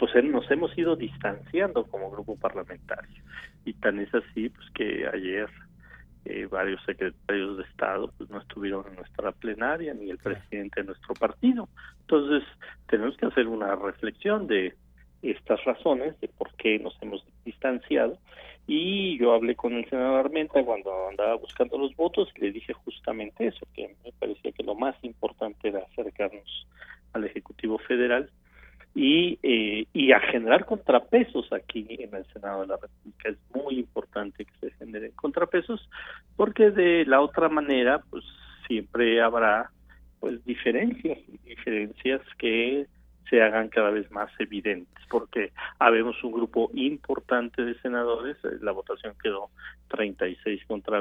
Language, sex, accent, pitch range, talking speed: Spanish, male, Mexican, 105-140 Hz, 150 wpm